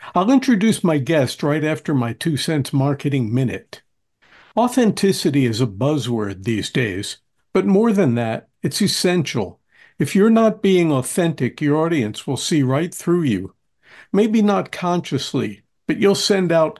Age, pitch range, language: 60-79, 135-175 Hz, English